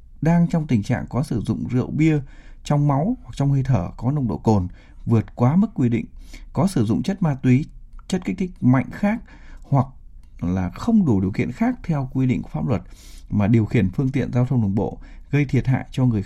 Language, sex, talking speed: Vietnamese, male, 230 wpm